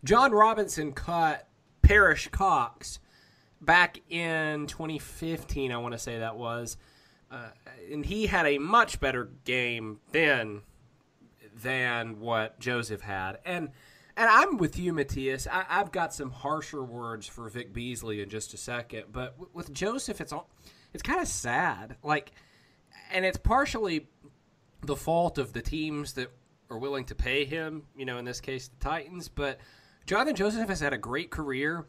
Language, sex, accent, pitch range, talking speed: English, male, American, 120-150 Hz, 160 wpm